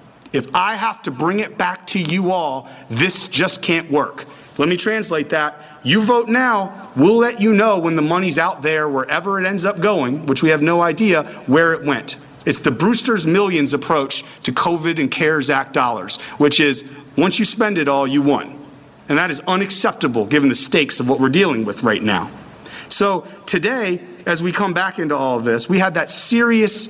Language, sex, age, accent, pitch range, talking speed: English, male, 40-59, American, 145-190 Hz, 205 wpm